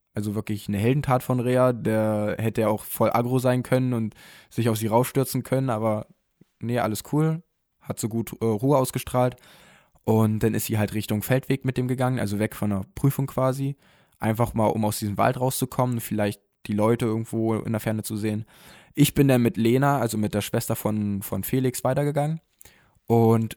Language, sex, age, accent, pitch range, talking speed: German, male, 10-29, German, 110-130 Hz, 190 wpm